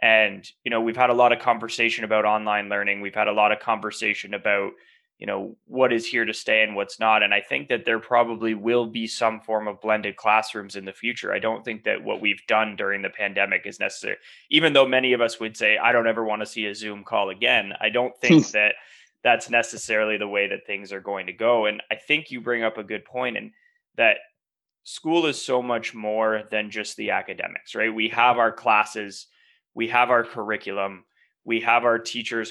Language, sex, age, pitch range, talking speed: English, male, 20-39, 105-125 Hz, 225 wpm